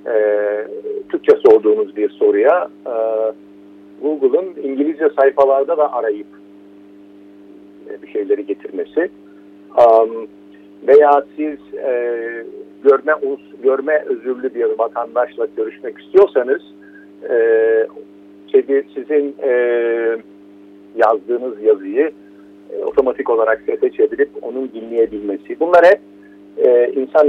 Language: Turkish